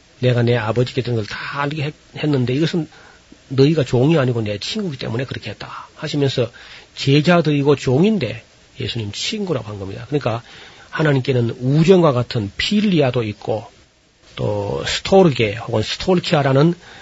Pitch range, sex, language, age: 120-155 Hz, male, Korean, 40-59